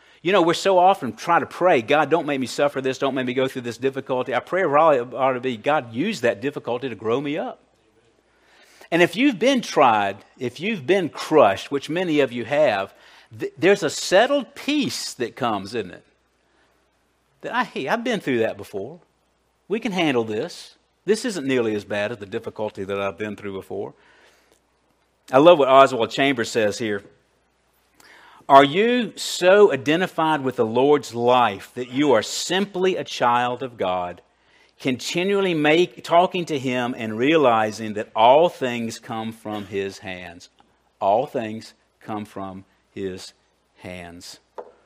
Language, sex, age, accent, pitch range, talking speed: English, male, 50-69, American, 120-170 Hz, 160 wpm